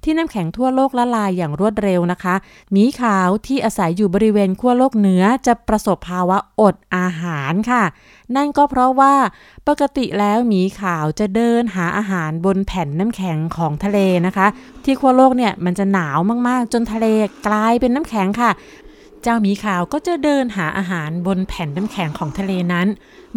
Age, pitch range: 20-39, 190-250 Hz